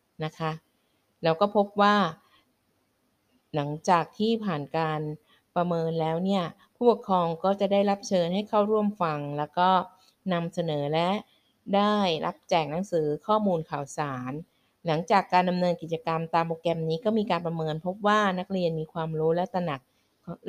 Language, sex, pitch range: Thai, female, 155-185 Hz